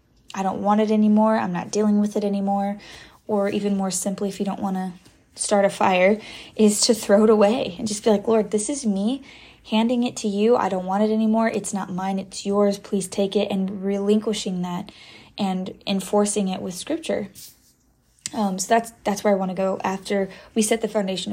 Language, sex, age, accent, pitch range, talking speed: English, female, 20-39, American, 195-215 Hz, 210 wpm